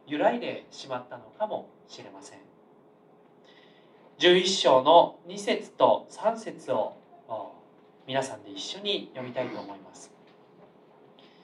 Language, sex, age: Japanese, male, 40-59